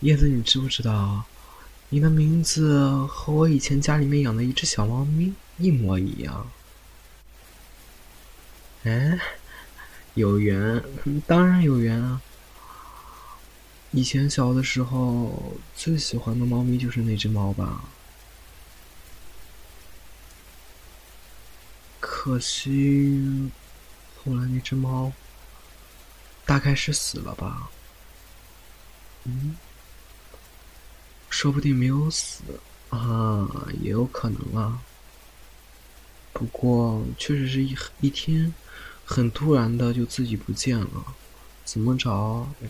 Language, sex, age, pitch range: Chinese, male, 20-39, 90-140 Hz